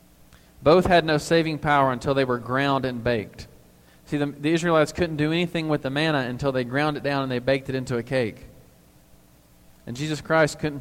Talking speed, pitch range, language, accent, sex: 205 wpm, 110-150 Hz, English, American, male